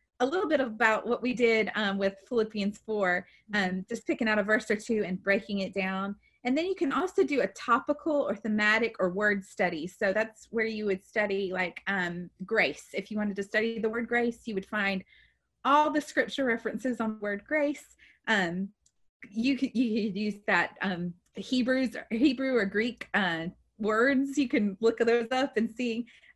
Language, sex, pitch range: English, female, 200-260 Hz